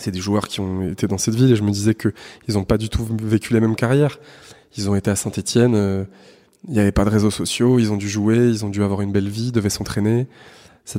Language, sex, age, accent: French, male, 20-39, French